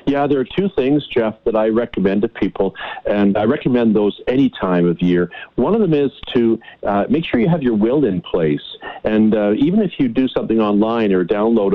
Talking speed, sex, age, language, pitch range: 220 wpm, male, 50-69, English, 105-130 Hz